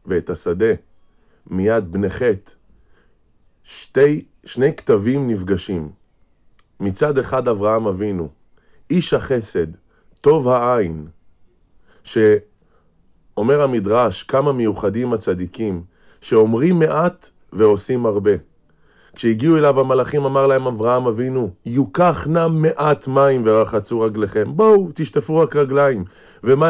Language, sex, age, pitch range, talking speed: Hebrew, male, 20-39, 100-145 Hz, 95 wpm